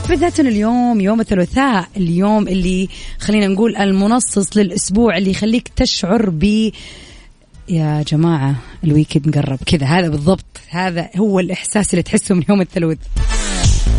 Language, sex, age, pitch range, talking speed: Arabic, female, 20-39, 160-225 Hz, 125 wpm